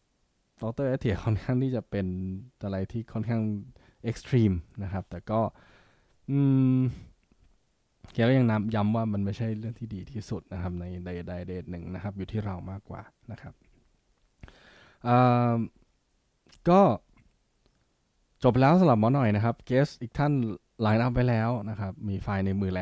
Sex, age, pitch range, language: male, 20-39, 95-120 Hz, Thai